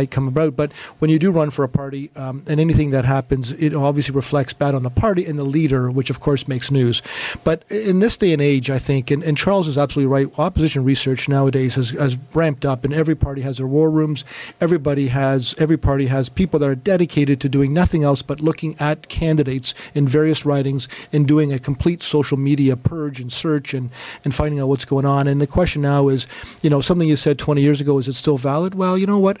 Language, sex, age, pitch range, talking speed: English, male, 50-69, 135-155 Hz, 235 wpm